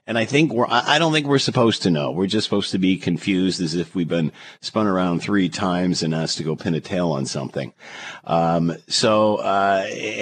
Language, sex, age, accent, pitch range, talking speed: English, male, 50-69, American, 80-110 Hz, 215 wpm